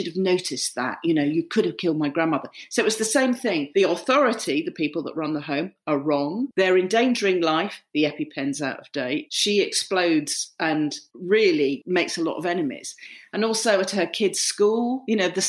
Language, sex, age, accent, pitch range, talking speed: English, female, 40-59, British, 155-215 Hz, 205 wpm